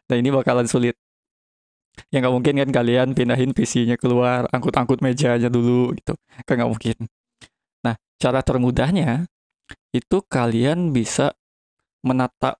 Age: 20-39